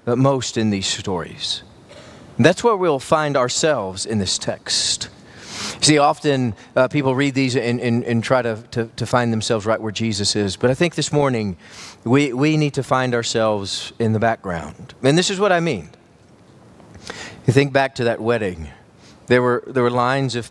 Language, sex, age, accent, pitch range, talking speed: English, male, 40-59, American, 120-175 Hz, 185 wpm